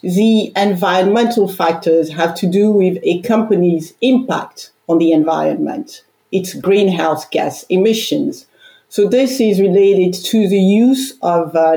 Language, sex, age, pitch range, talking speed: Czech, female, 50-69, 175-230 Hz, 135 wpm